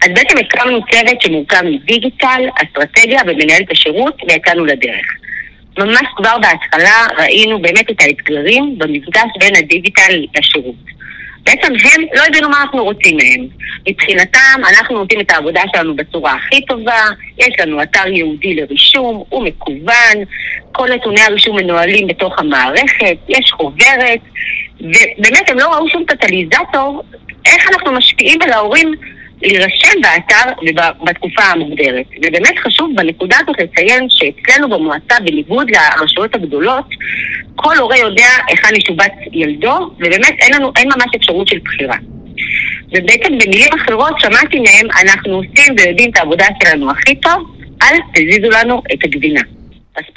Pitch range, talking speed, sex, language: 175-270 Hz, 135 wpm, female, Hebrew